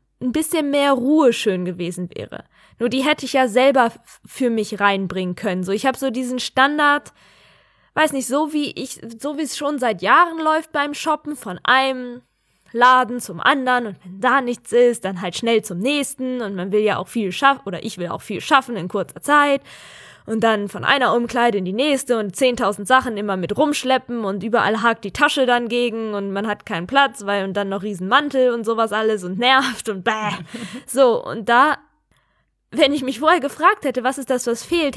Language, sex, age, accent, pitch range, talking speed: German, female, 10-29, German, 210-280 Hz, 210 wpm